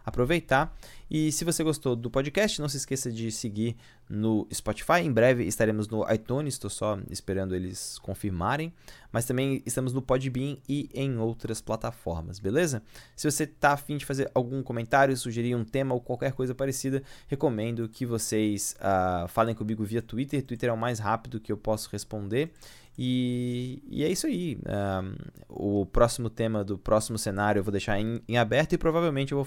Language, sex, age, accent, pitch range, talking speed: Portuguese, male, 20-39, Brazilian, 110-135 Hz, 180 wpm